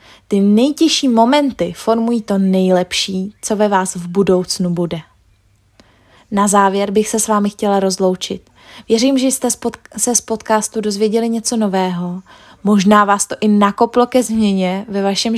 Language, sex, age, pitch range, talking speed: Czech, female, 20-39, 190-235 Hz, 150 wpm